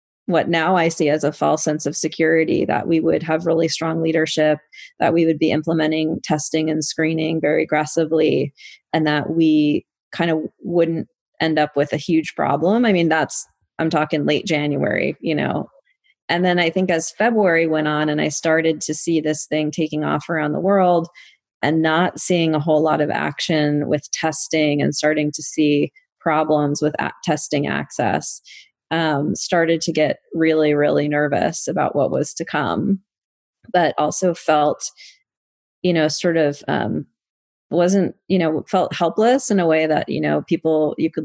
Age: 30-49